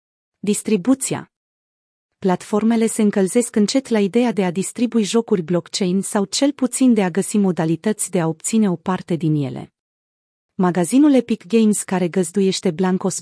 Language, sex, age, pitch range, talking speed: Romanian, female, 30-49, 180-220 Hz, 145 wpm